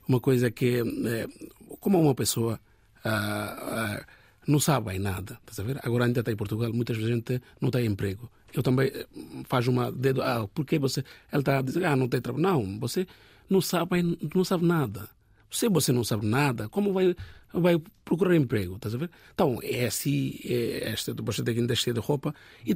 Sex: male